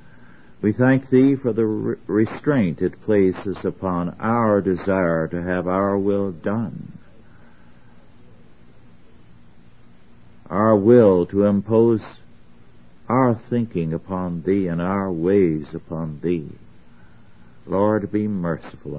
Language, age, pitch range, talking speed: English, 60-79, 75-105 Hz, 100 wpm